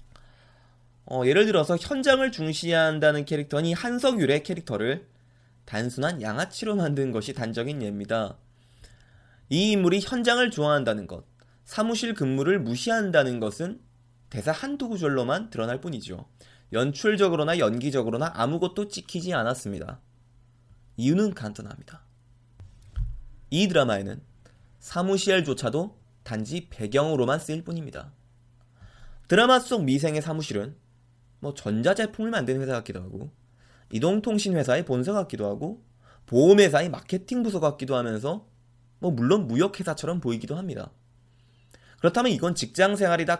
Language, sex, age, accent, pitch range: Korean, male, 20-39, native, 120-170 Hz